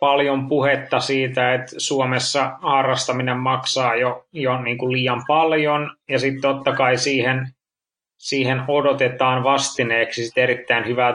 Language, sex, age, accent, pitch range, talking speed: Finnish, male, 20-39, native, 125-140 Hz, 130 wpm